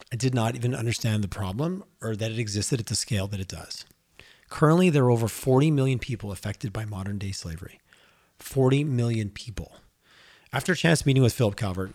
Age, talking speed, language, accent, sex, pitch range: 30-49, 190 wpm, English, American, male, 100-130 Hz